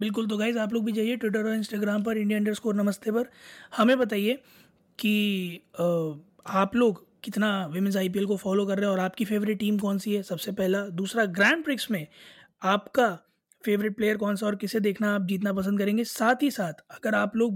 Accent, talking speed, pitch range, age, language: native, 200 wpm, 195-225 Hz, 20-39, Hindi